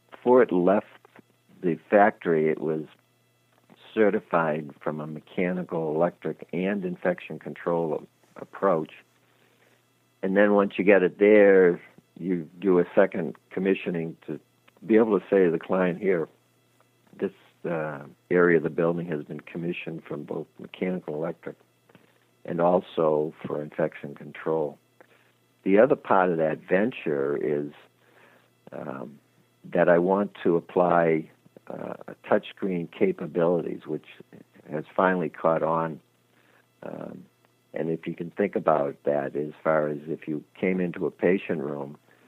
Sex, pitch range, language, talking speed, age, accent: male, 75-90 Hz, English, 135 wpm, 60-79, American